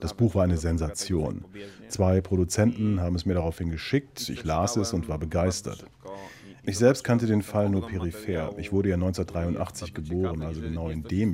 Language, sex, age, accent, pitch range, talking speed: German, male, 40-59, German, 90-110 Hz, 180 wpm